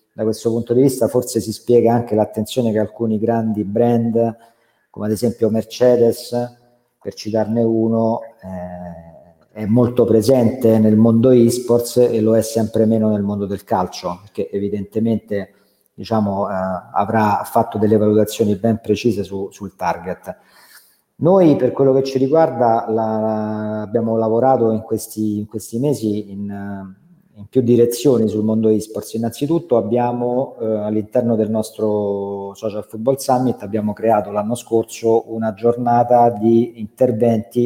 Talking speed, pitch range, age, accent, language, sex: 145 wpm, 105-120 Hz, 40-59, native, Italian, male